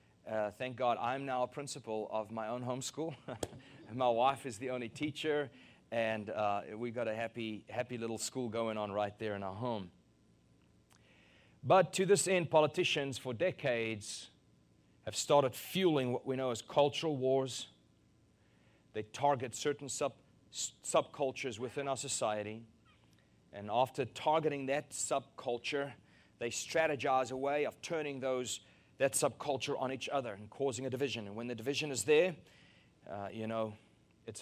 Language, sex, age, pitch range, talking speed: English, male, 30-49, 115-140 Hz, 160 wpm